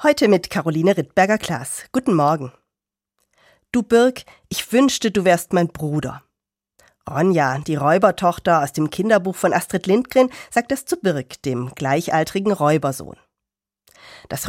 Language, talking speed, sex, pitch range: German, 130 wpm, female, 150-210 Hz